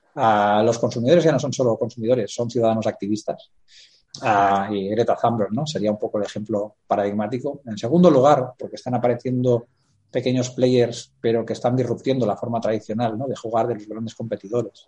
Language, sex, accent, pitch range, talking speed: Spanish, male, Spanish, 105-125 Hz, 180 wpm